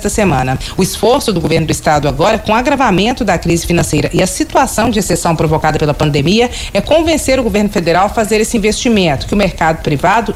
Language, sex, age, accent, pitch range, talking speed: Portuguese, female, 40-59, Brazilian, 165-225 Hz, 210 wpm